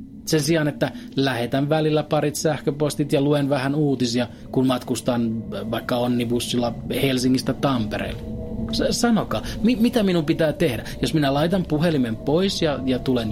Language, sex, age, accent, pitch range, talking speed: Finnish, male, 30-49, native, 120-155 Hz, 140 wpm